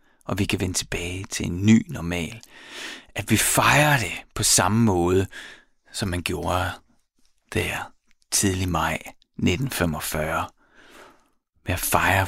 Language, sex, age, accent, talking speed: Danish, male, 30-49, native, 130 wpm